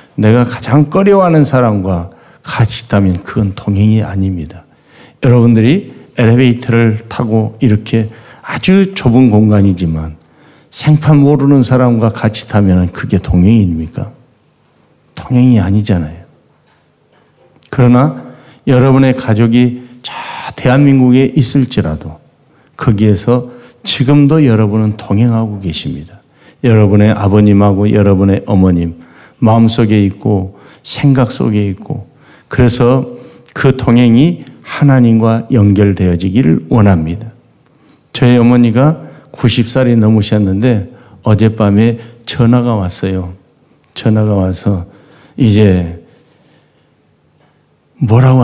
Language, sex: Korean, male